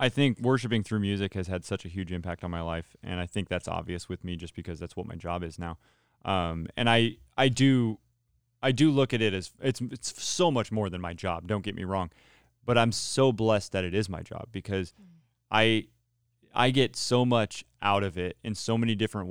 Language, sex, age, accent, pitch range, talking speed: English, male, 20-39, American, 90-120 Hz, 230 wpm